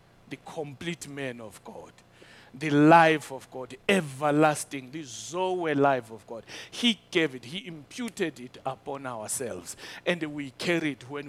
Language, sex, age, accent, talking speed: English, male, 60-79, South African, 150 wpm